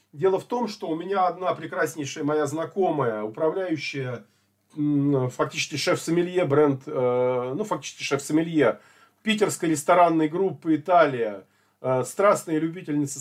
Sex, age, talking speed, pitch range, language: male, 40-59, 105 wpm, 145-195 Hz, Russian